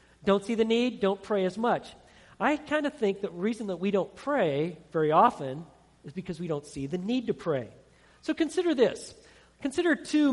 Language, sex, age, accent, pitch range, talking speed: English, male, 40-59, American, 180-230 Hz, 200 wpm